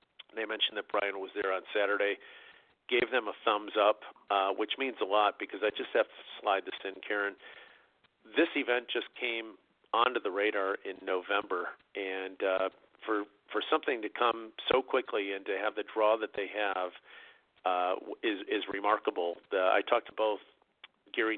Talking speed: 175 wpm